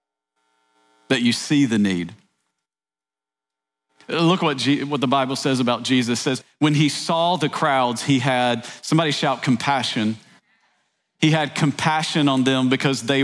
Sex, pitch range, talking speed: male, 110-175 Hz, 150 wpm